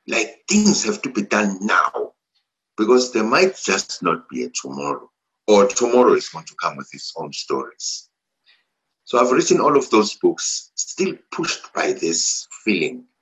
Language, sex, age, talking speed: English, male, 60-79, 170 wpm